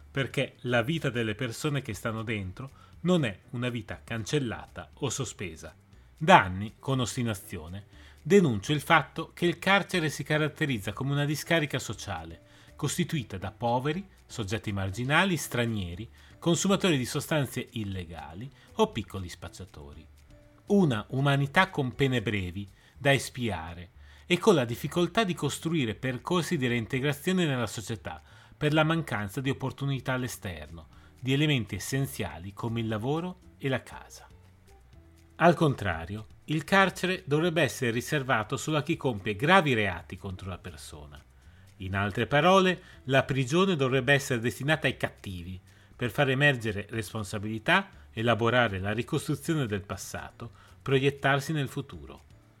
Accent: native